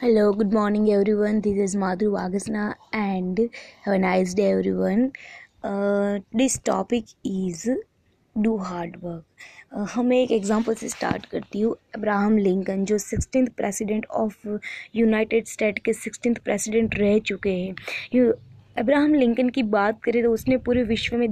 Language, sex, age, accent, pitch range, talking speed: Hindi, female, 20-39, native, 210-250 Hz, 145 wpm